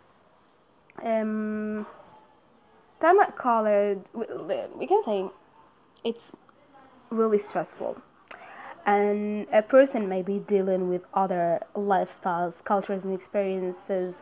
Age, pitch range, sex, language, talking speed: 20-39, 195-240 Hz, female, English, 95 wpm